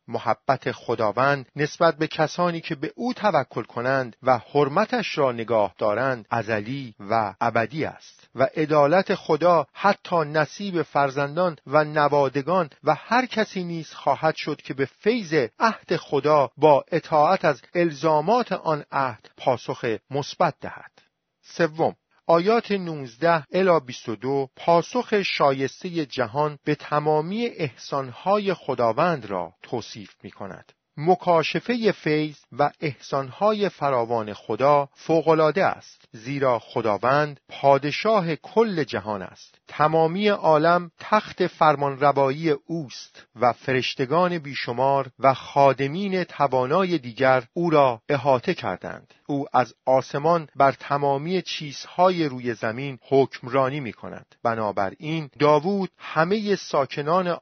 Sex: male